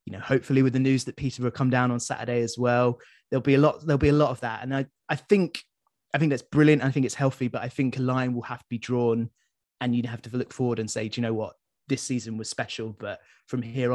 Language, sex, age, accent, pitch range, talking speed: English, male, 20-39, British, 115-135 Hz, 285 wpm